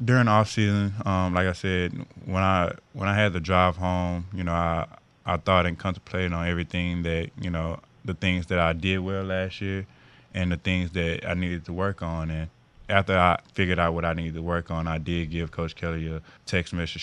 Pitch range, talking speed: 80-90 Hz, 220 wpm